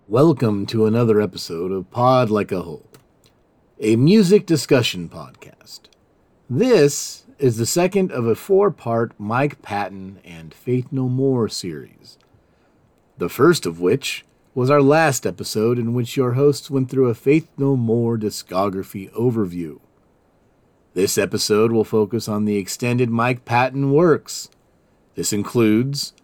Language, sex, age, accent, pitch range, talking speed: English, male, 40-59, American, 105-140 Hz, 135 wpm